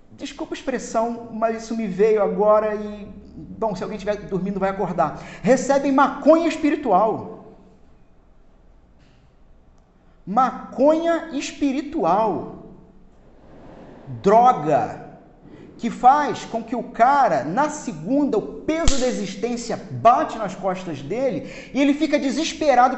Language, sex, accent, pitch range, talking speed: Portuguese, male, Brazilian, 220-285 Hz, 110 wpm